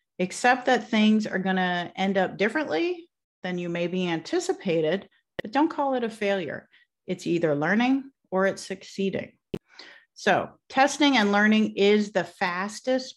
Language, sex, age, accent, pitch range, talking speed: English, female, 40-59, American, 180-255 Hz, 145 wpm